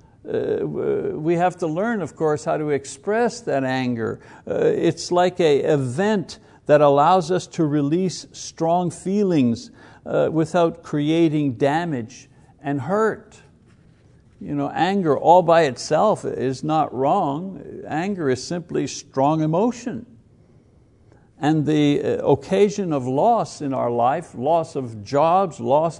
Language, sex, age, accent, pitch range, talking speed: English, male, 60-79, American, 130-180 Hz, 125 wpm